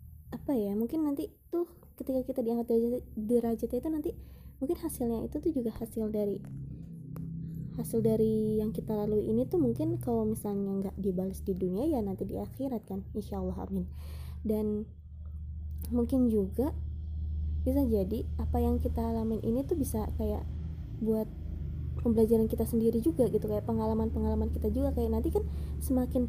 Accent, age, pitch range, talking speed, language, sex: native, 20-39, 155-230 Hz, 150 wpm, Indonesian, female